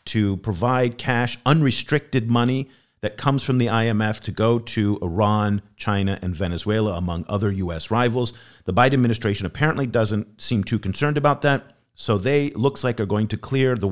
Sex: male